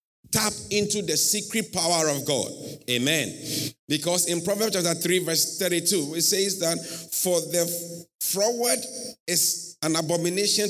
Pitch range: 165-210 Hz